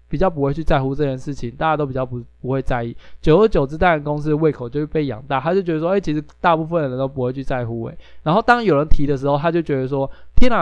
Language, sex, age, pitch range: Chinese, male, 20-39, 130-165 Hz